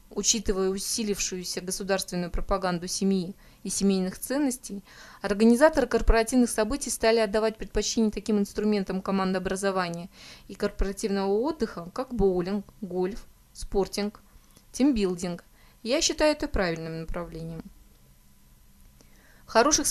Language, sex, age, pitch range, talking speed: Russian, female, 20-39, 190-230 Hz, 95 wpm